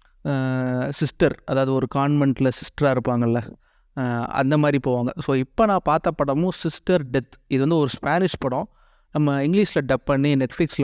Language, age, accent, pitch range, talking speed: Tamil, 30-49, native, 130-160 Hz, 145 wpm